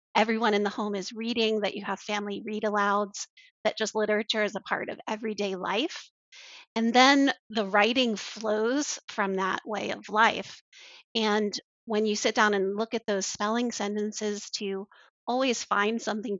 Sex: female